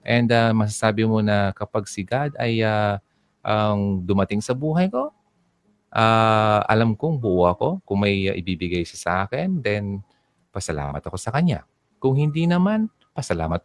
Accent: native